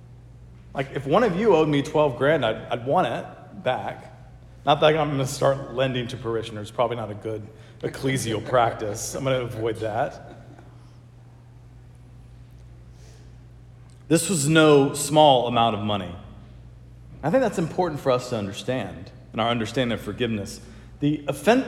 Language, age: English, 40-59